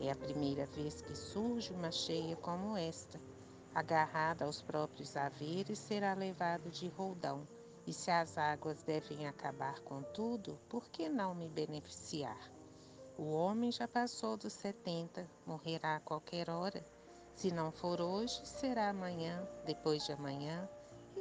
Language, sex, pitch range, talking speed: Portuguese, female, 155-200 Hz, 145 wpm